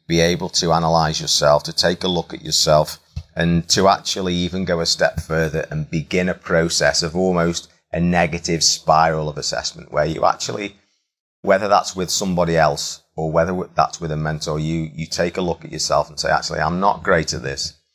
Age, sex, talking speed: 30-49, male, 195 wpm